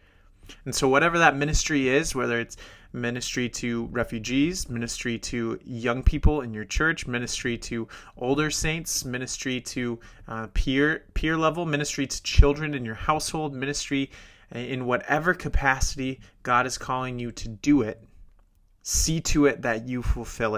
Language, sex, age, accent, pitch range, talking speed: English, male, 30-49, American, 115-145 Hz, 150 wpm